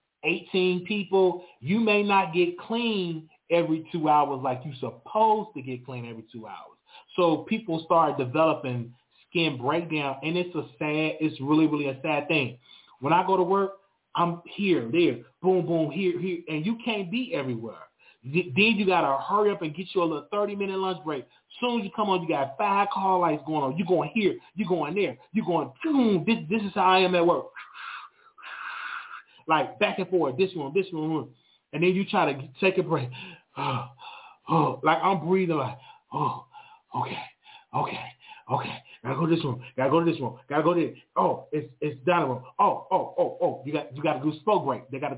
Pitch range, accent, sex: 150-195 Hz, American, male